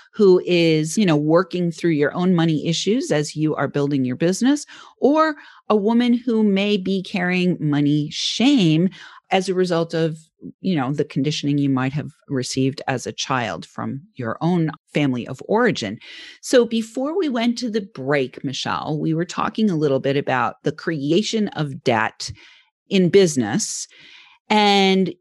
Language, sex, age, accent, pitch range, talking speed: English, female, 40-59, American, 150-210 Hz, 160 wpm